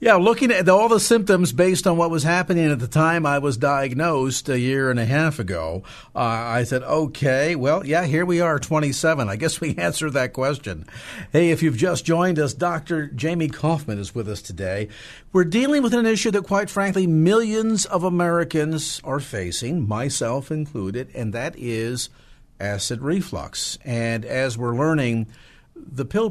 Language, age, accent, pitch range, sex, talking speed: English, 50-69, American, 120-165 Hz, male, 180 wpm